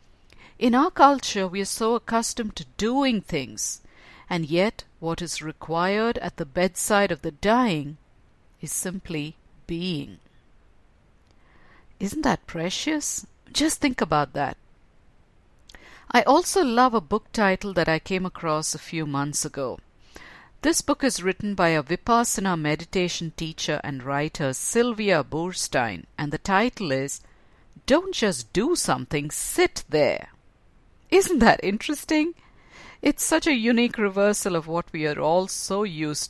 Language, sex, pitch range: English, female, 160-235 Hz